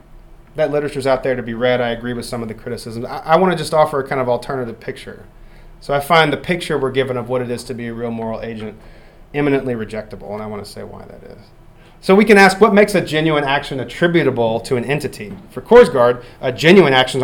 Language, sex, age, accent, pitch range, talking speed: English, male, 30-49, American, 115-155 Hz, 245 wpm